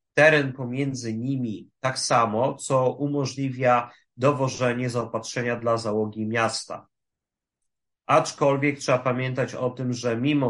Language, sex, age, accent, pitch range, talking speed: Polish, male, 30-49, native, 115-135 Hz, 110 wpm